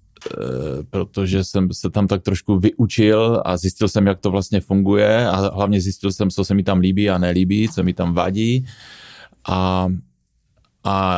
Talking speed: 165 wpm